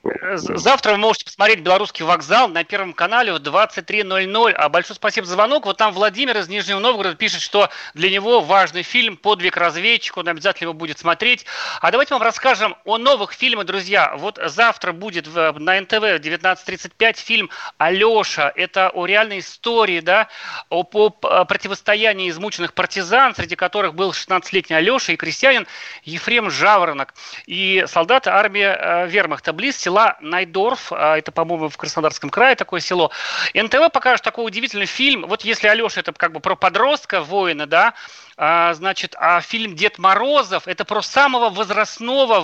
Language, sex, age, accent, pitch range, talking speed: Russian, male, 40-59, native, 170-225 Hz, 155 wpm